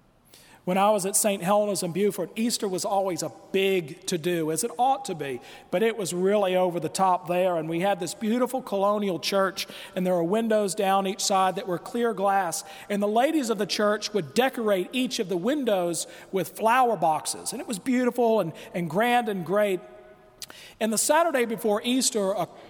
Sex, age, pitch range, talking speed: male, 40-59, 190-235 Hz, 200 wpm